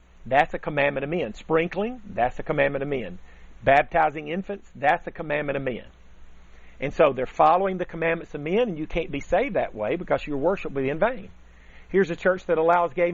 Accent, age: American, 40-59